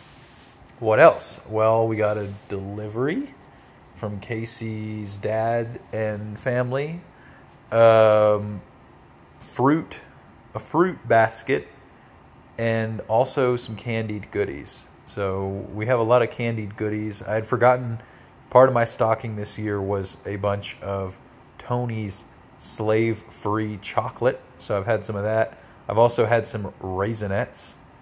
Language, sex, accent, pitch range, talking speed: English, male, American, 100-115 Hz, 125 wpm